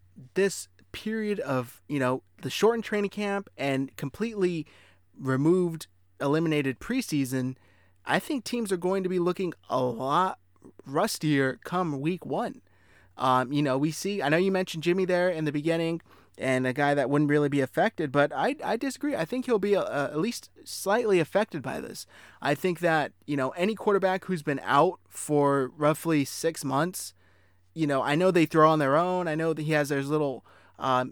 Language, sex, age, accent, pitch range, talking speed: English, male, 20-39, American, 135-180 Hz, 185 wpm